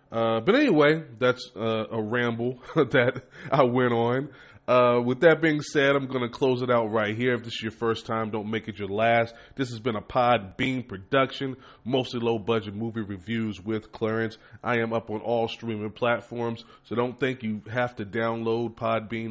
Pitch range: 100-120 Hz